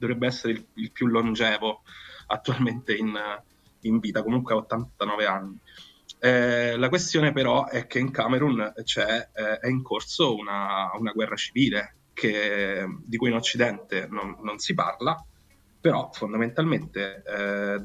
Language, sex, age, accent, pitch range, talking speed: Italian, male, 20-39, native, 105-130 Hz, 140 wpm